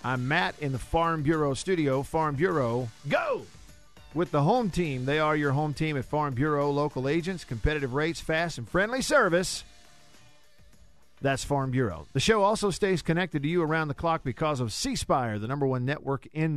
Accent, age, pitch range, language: American, 50-69, 125-165 Hz, English